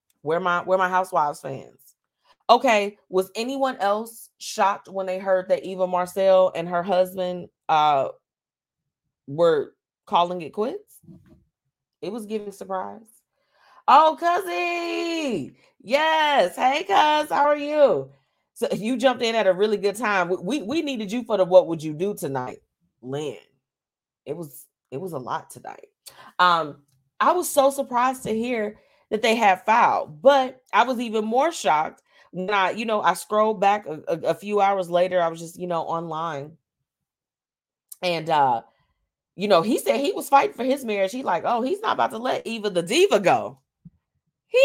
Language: English